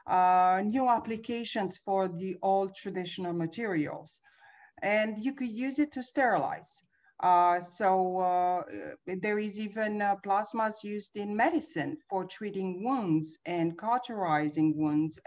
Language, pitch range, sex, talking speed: English, 175-220 Hz, female, 125 wpm